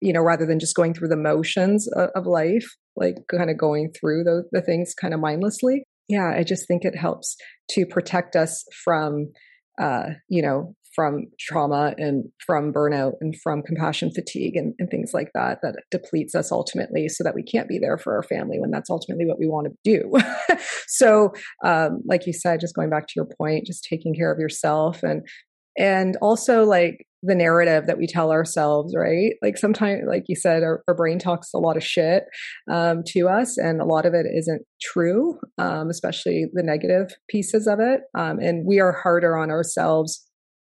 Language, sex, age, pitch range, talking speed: English, female, 30-49, 155-180 Hz, 200 wpm